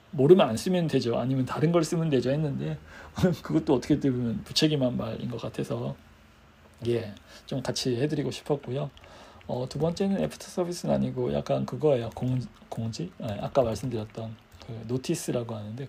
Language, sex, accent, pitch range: Korean, male, native, 115-155 Hz